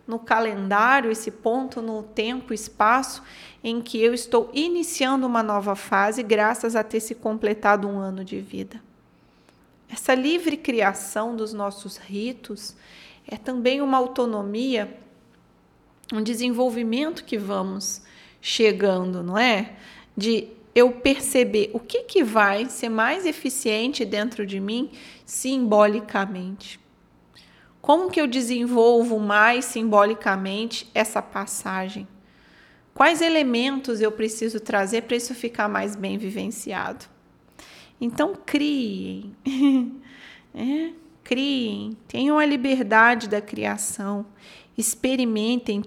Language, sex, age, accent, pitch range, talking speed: Portuguese, female, 30-49, Brazilian, 205-250 Hz, 110 wpm